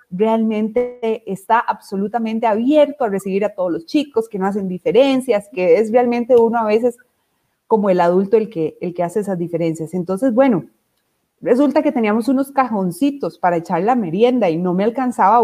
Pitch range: 190-255 Hz